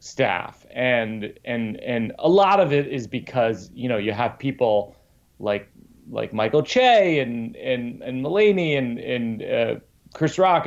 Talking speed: 155 wpm